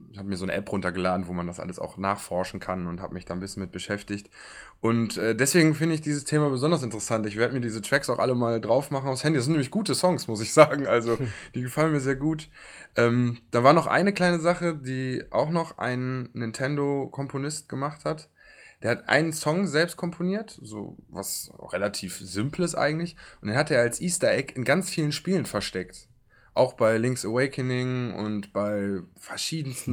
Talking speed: 200 wpm